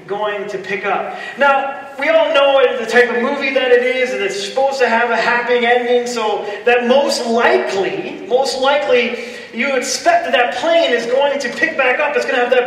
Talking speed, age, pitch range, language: 215 wpm, 30-49, 205-280 Hz, English